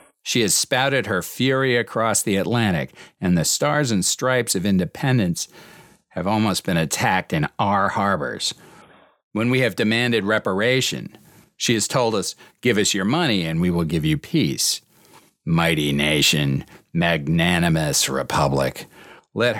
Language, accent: English, American